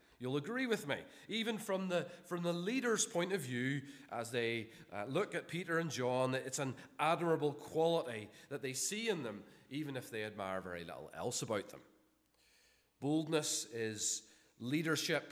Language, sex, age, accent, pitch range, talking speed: English, male, 30-49, British, 120-165 Hz, 165 wpm